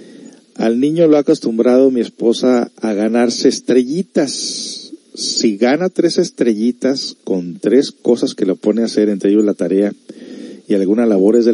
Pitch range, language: 105-165 Hz, Spanish